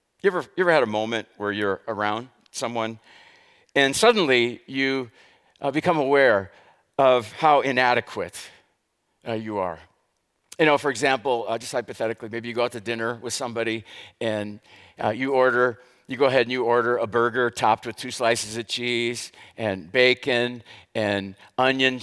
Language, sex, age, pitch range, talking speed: English, male, 50-69, 110-140 Hz, 160 wpm